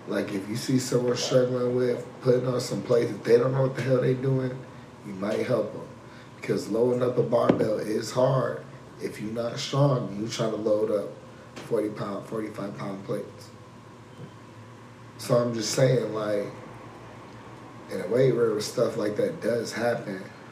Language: English